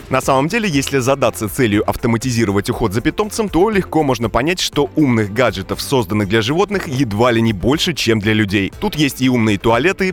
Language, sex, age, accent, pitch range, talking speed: Russian, male, 30-49, native, 110-140 Hz, 190 wpm